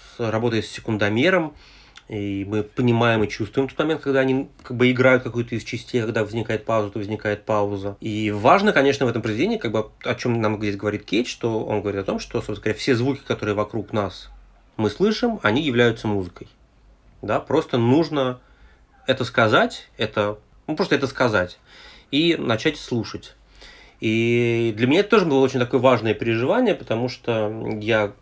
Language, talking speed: Russian, 175 wpm